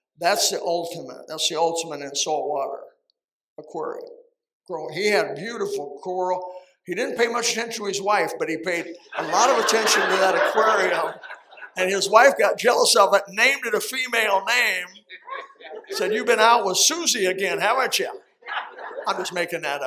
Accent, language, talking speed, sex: American, English, 170 wpm, male